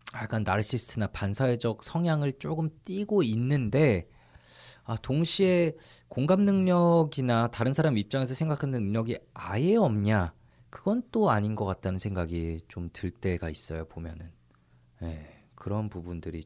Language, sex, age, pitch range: Korean, male, 20-39, 90-125 Hz